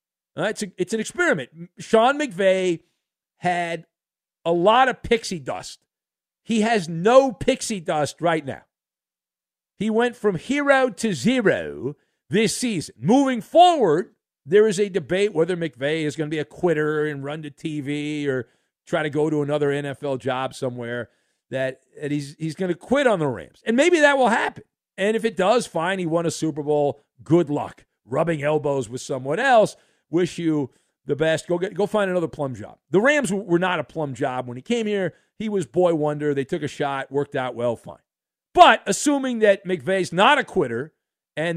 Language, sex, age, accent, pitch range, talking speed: English, male, 50-69, American, 145-215 Hz, 190 wpm